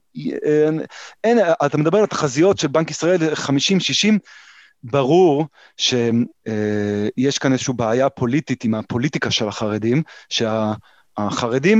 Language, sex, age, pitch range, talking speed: Hebrew, male, 30-49, 125-170 Hz, 115 wpm